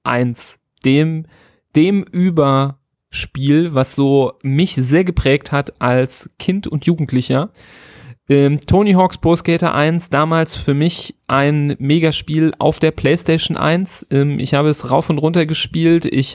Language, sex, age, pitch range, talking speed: German, male, 40-59, 135-160 Hz, 140 wpm